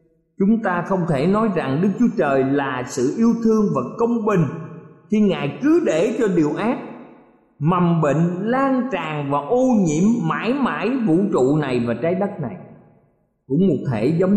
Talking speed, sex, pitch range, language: 180 wpm, male, 140-200 Hz, Vietnamese